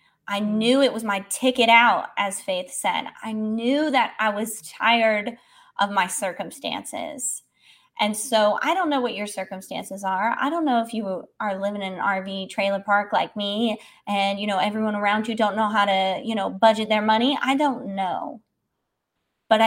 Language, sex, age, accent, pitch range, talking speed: English, female, 20-39, American, 210-275 Hz, 185 wpm